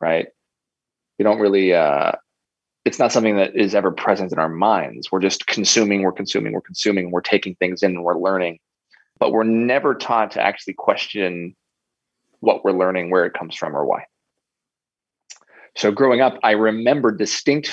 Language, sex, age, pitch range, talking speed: English, male, 30-49, 100-125 Hz, 175 wpm